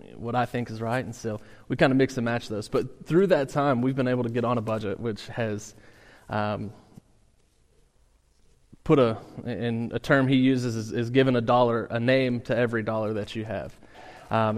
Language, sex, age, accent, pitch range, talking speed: English, male, 30-49, American, 110-125 Hz, 205 wpm